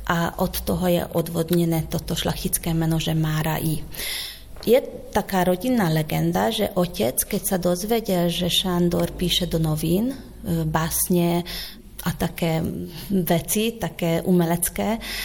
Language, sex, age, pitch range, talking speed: Slovak, female, 30-49, 170-195 Hz, 120 wpm